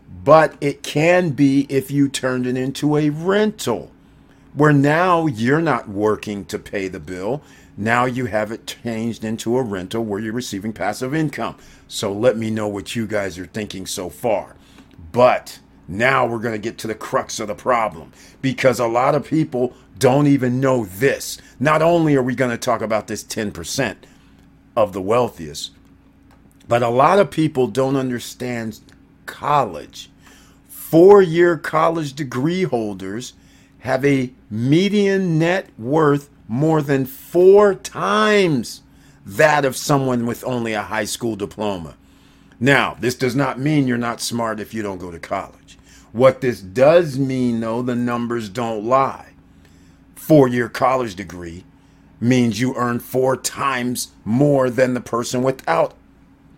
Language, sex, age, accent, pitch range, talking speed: English, male, 50-69, American, 110-140 Hz, 155 wpm